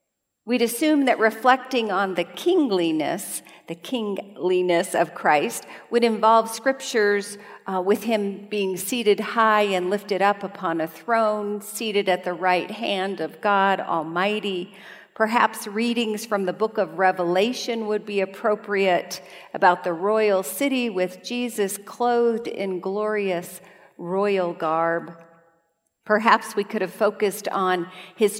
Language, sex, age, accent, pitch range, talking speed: English, female, 50-69, American, 185-235 Hz, 130 wpm